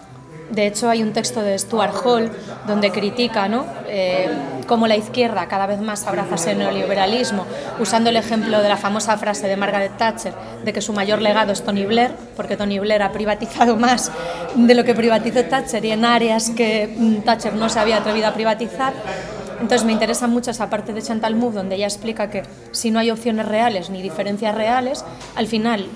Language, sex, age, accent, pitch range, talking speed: English, female, 20-39, Spanish, 205-235 Hz, 195 wpm